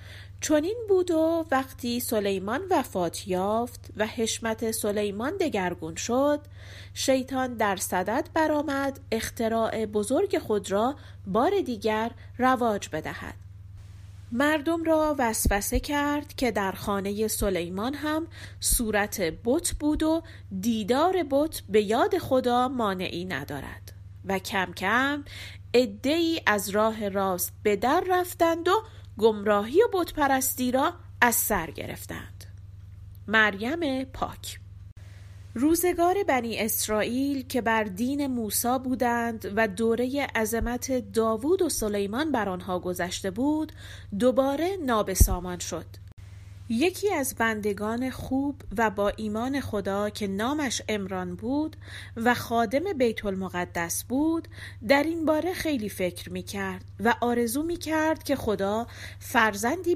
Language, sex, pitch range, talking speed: Persian, female, 190-280 Hz, 115 wpm